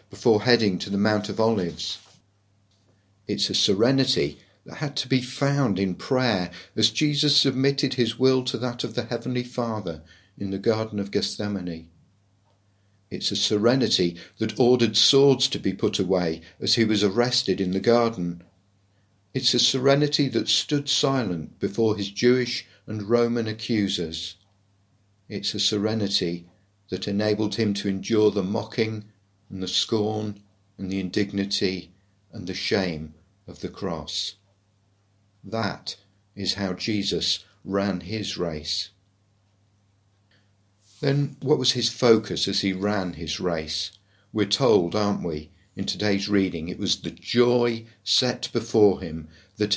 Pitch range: 95-115 Hz